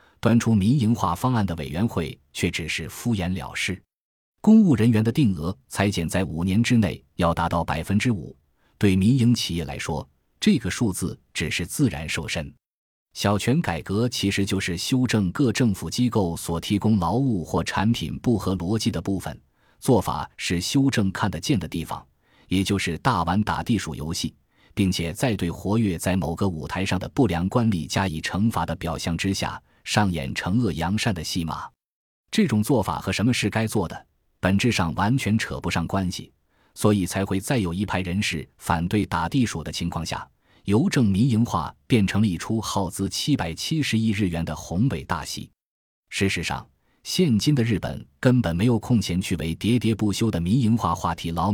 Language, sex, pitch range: Chinese, male, 85-115 Hz